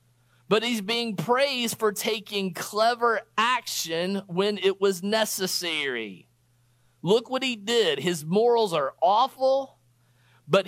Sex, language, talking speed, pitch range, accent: male, English, 120 wpm, 160-225 Hz, American